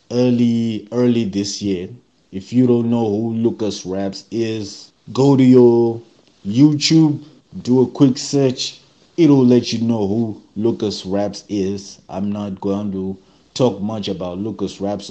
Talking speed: 145 wpm